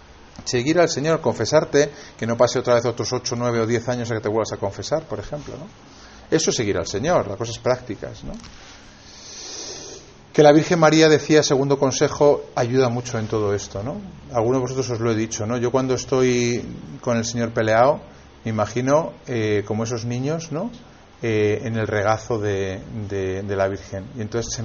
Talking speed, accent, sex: 195 wpm, Spanish, male